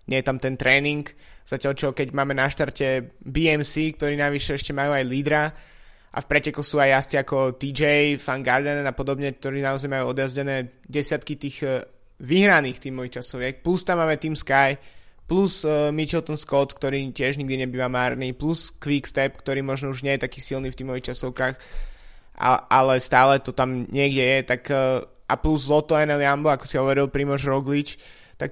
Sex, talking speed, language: male, 175 wpm, Slovak